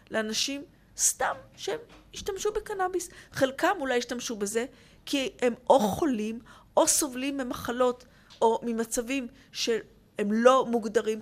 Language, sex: Hebrew, female